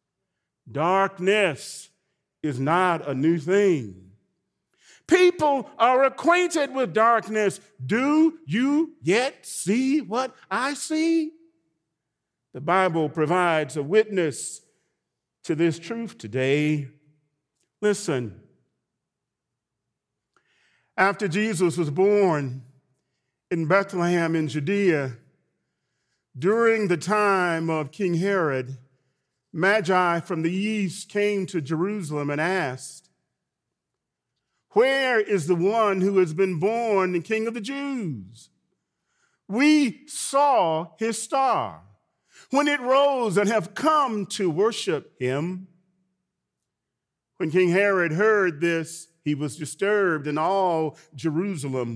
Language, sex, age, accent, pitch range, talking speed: English, male, 40-59, American, 155-215 Hz, 100 wpm